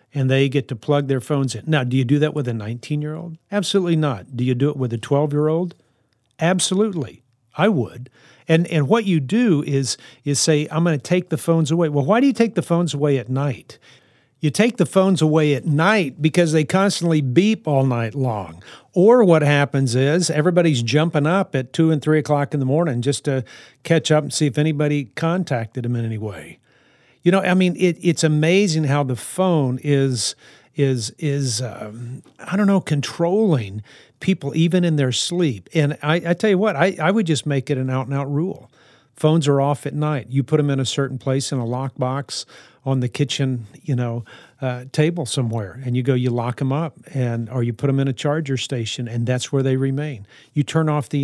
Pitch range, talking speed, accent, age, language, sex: 130-165 Hz, 210 wpm, American, 50-69, English, male